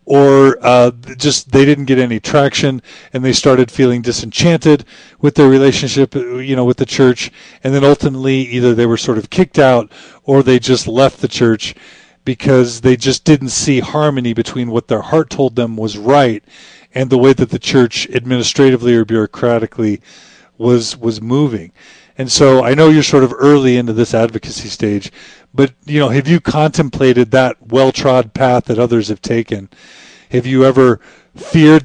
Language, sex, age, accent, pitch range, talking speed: English, male, 40-59, American, 115-135 Hz, 175 wpm